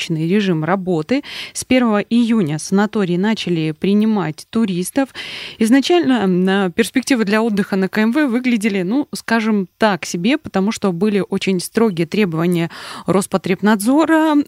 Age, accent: 20-39, native